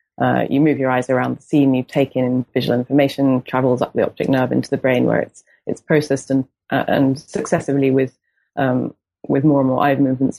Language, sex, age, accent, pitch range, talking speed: English, female, 20-39, British, 130-145 Hz, 215 wpm